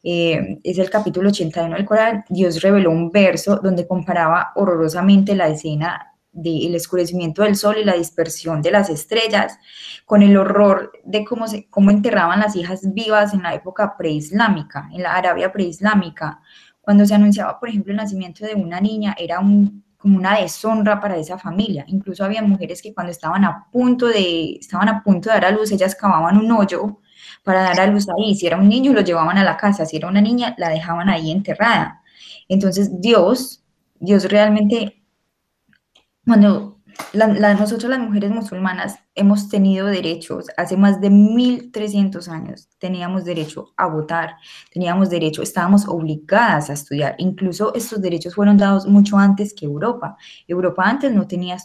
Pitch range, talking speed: 175-210 Hz, 170 wpm